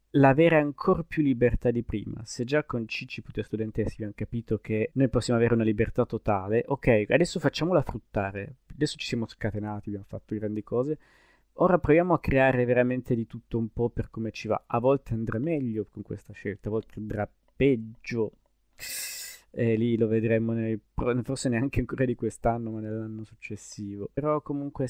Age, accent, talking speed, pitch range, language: 20-39, native, 170 wpm, 110-140 Hz, Italian